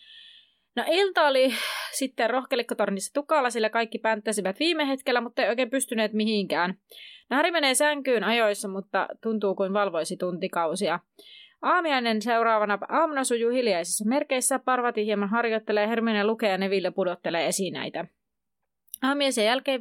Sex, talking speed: female, 135 wpm